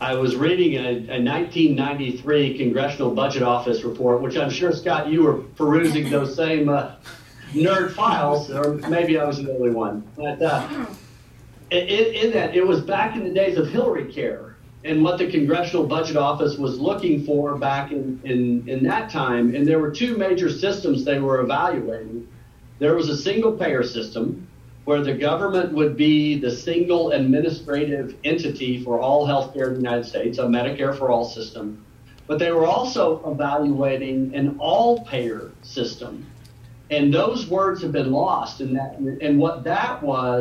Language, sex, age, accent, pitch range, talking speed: English, male, 50-69, American, 125-160 Hz, 165 wpm